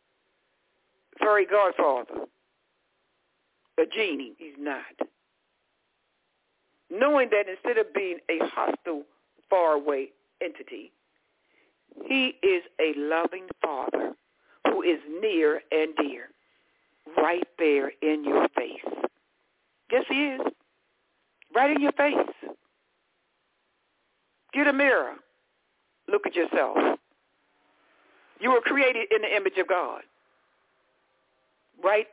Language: English